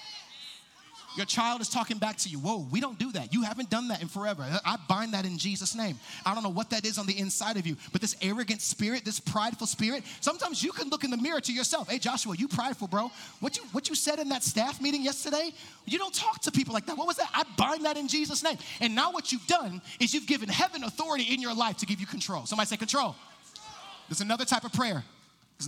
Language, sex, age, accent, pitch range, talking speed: English, male, 30-49, American, 190-245 Hz, 250 wpm